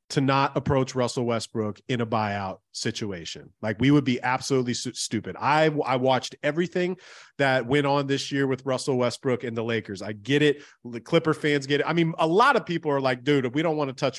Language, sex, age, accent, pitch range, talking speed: English, male, 30-49, American, 130-170 Hz, 225 wpm